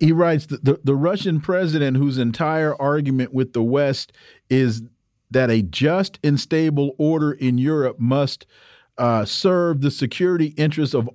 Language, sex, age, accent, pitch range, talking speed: English, male, 40-59, American, 130-180 Hz, 150 wpm